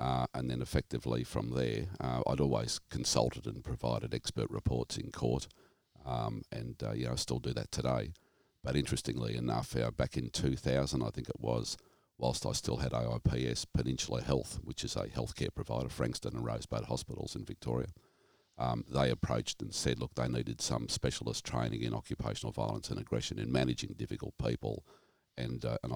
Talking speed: 180 wpm